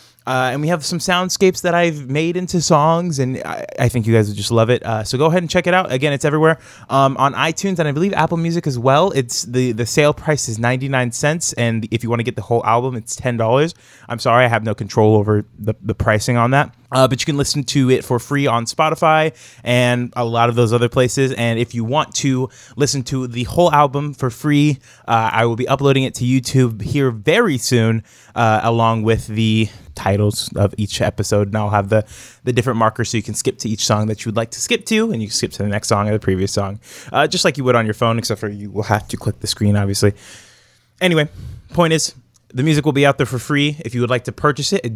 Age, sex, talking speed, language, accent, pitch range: 20-39, male, 255 wpm, English, American, 110-145 Hz